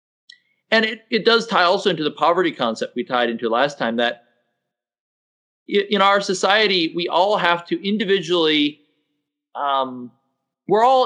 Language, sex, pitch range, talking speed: English, male, 130-200 Hz, 145 wpm